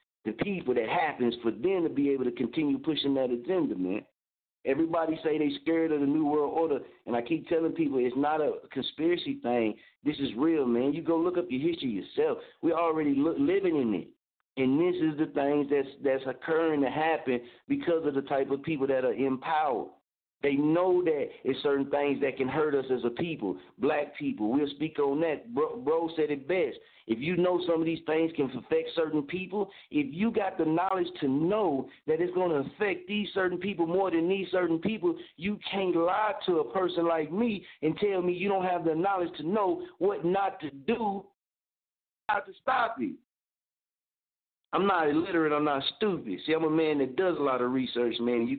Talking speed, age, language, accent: 210 wpm, 50-69, English, American